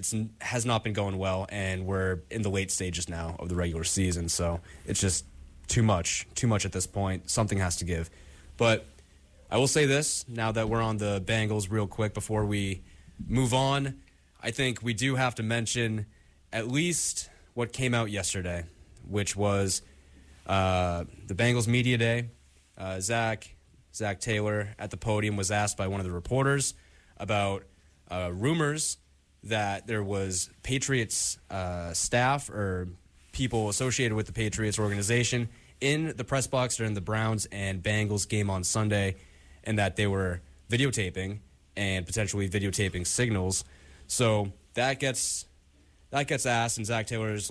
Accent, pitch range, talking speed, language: American, 90-115 Hz, 165 wpm, English